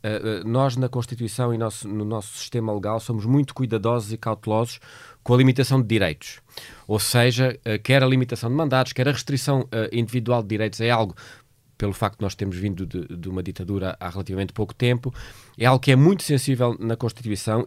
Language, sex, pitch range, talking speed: Portuguese, male, 110-135 Hz, 200 wpm